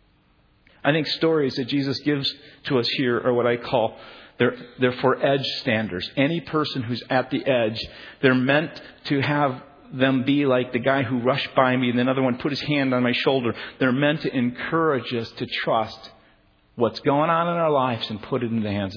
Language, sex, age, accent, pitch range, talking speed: English, male, 50-69, American, 120-145 Hz, 205 wpm